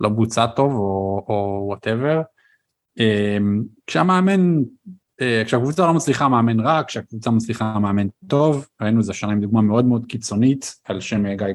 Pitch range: 105-120 Hz